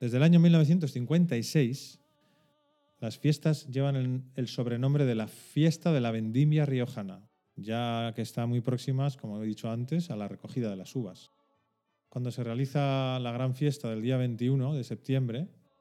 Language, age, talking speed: Spanish, 40-59, 165 wpm